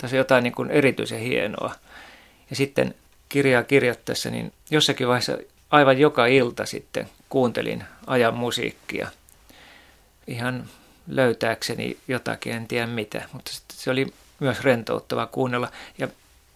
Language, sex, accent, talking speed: Finnish, male, native, 120 wpm